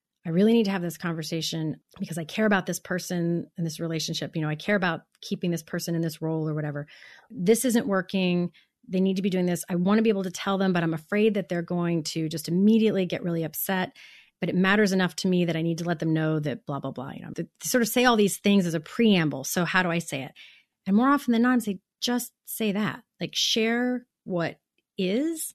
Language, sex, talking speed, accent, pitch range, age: English, female, 250 wpm, American, 165-210 Hz, 30-49